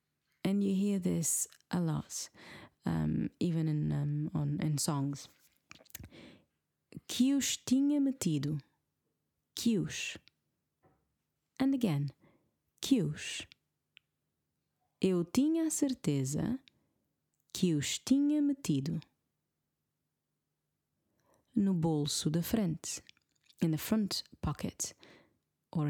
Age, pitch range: 30-49, 150-240 Hz